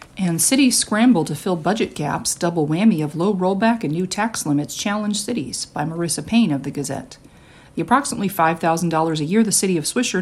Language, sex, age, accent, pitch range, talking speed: English, female, 40-59, American, 160-210 Hz, 195 wpm